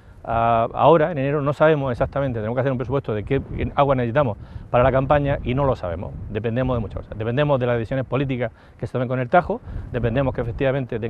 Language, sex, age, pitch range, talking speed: Spanish, male, 40-59, 110-135 Hz, 215 wpm